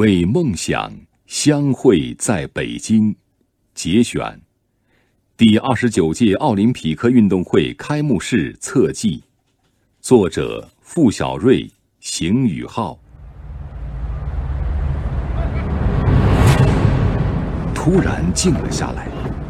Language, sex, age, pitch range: Chinese, male, 60-79, 75-105 Hz